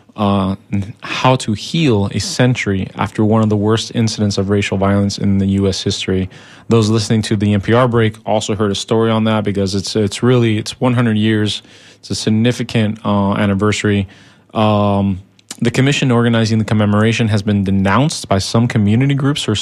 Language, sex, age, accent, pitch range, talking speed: English, male, 20-39, American, 100-120 Hz, 175 wpm